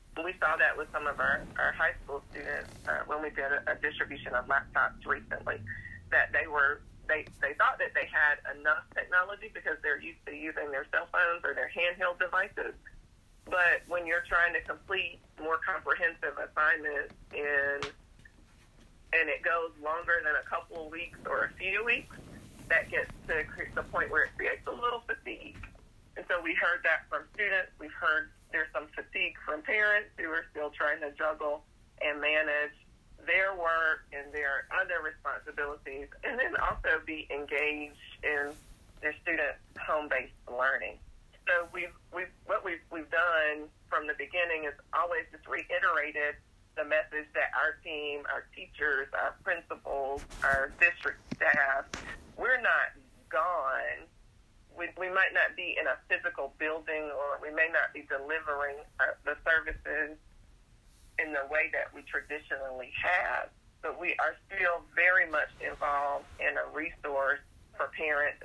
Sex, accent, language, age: female, American, English, 30-49